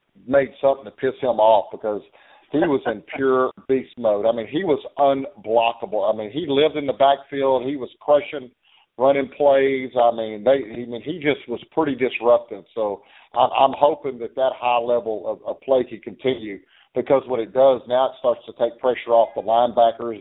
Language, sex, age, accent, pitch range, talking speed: English, male, 50-69, American, 115-135 Hz, 195 wpm